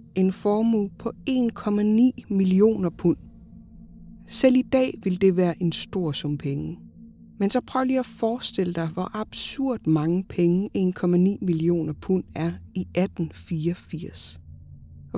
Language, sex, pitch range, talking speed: Danish, female, 160-205 Hz, 135 wpm